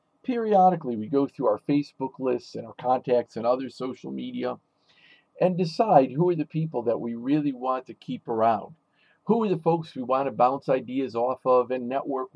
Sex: male